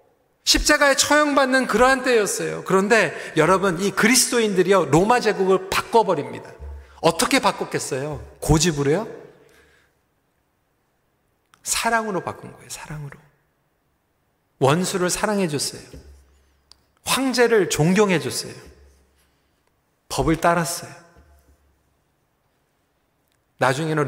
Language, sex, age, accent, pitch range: Korean, male, 40-59, native, 150-230 Hz